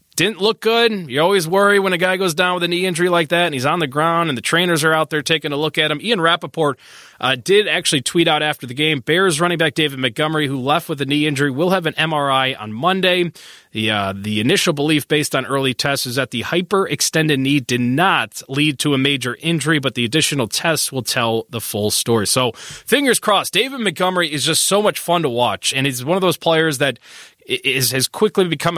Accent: American